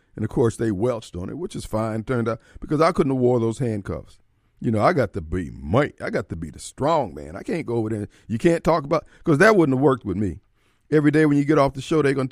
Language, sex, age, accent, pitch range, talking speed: English, male, 50-69, American, 100-130 Hz, 290 wpm